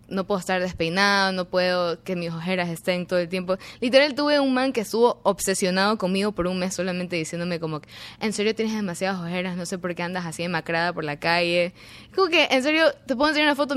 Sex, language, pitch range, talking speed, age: female, Spanish, 170-200 Hz, 220 wpm, 10-29